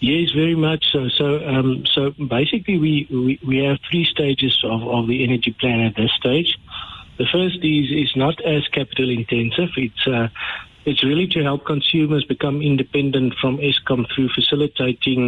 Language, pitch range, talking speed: English, 120-145 Hz, 170 wpm